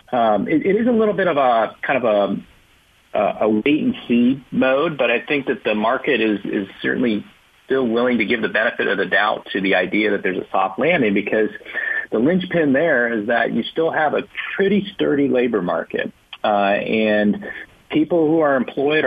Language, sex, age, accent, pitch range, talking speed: English, male, 40-59, American, 100-125 Hz, 200 wpm